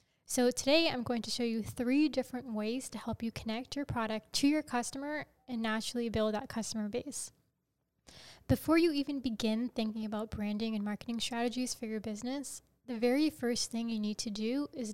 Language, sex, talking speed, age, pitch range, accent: English, female, 190 wpm, 10-29, 220-260 Hz, American